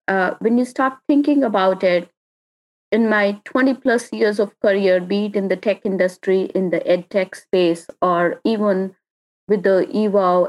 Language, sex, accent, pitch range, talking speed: English, female, Indian, 185-245 Hz, 170 wpm